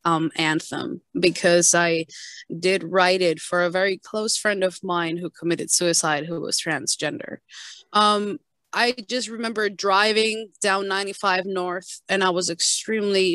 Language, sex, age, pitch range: English, female, 20-39, 175-210 Hz